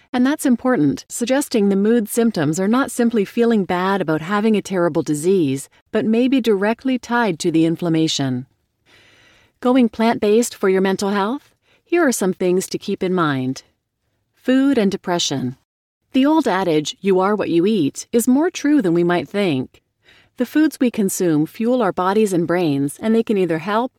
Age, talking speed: 40-59, 180 wpm